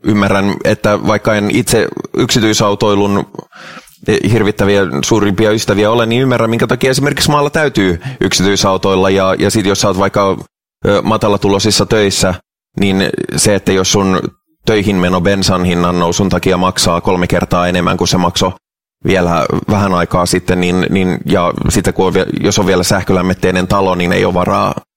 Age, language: 30-49, English